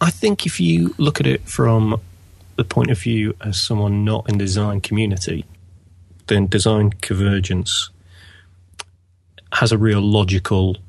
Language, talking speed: English, 140 wpm